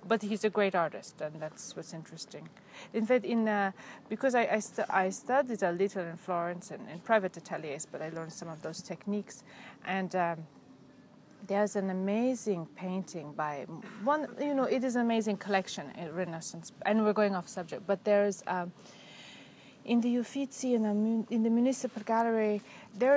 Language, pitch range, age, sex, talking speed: English, 190-235 Hz, 30-49, female, 185 wpm